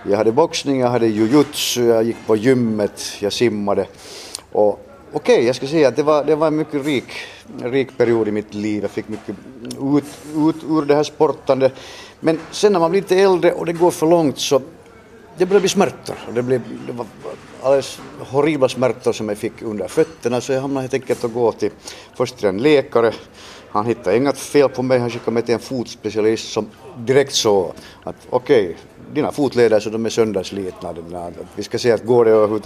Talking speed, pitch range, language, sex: 200 wpm, 115-155 Hz, Finnish, male